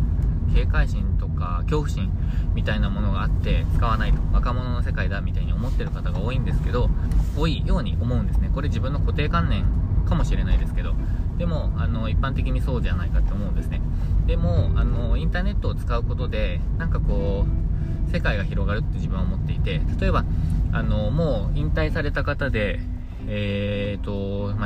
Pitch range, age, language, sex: 80-100 Hz, 20-39, Japanese, male